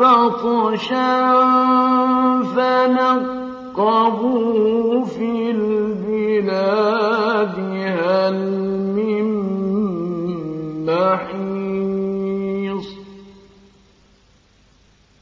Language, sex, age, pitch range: Arabic, male, 50-69, 195-255 Hz